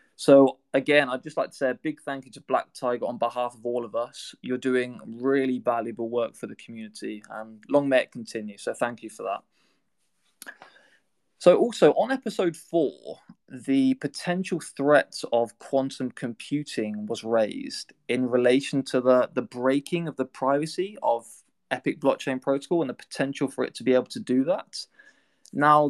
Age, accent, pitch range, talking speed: 20-39, British, 125-150 Hz, 175 wpm